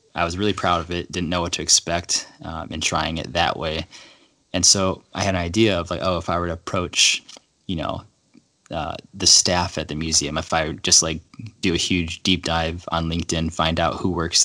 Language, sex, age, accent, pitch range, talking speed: English, male, 20-39, American, 80-90 Hz, 225 wpm